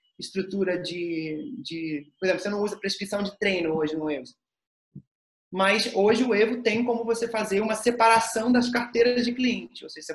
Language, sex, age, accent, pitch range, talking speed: Portuguese, male, 20-39, Brazilian, 175-230 Hz, 185 wpm